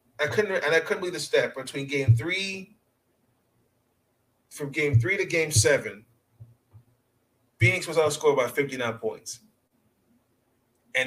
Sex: male